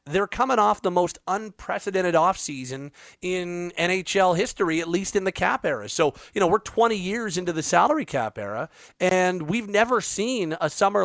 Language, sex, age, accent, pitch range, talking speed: English, male, 40-59, American, 150-190 Hz, 185 wpm